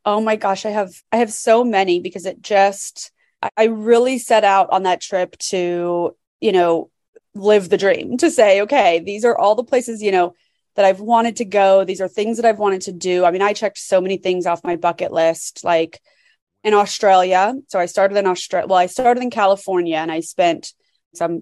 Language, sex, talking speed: English, female, 215 wpm